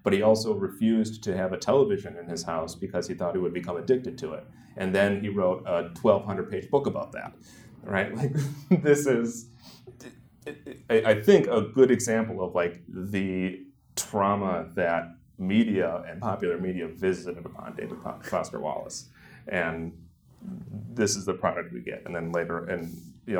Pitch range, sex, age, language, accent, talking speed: 90-120 Hz, male, 30-49, English, American, 170 wpm